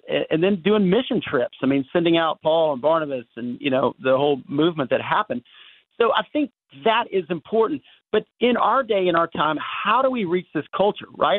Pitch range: 135-200 Hz